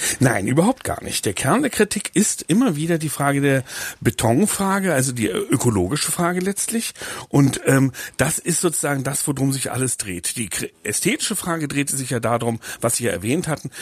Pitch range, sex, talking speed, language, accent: 110-145 Hz, male, 180 wpm, German, German